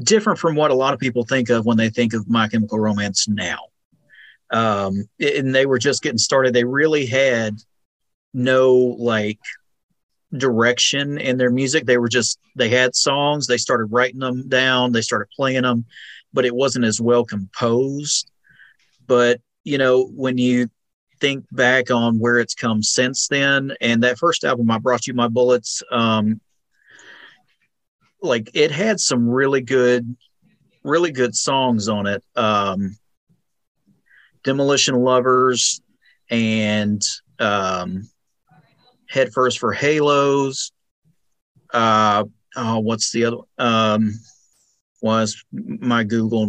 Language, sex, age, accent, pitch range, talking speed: English, male, 40-59, American, 110-130 Hz, 135 wpm